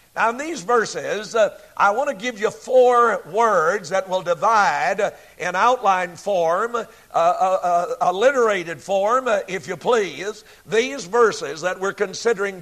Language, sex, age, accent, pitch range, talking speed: English, male, 60-79, American, 190-250 Hz, 150 wpm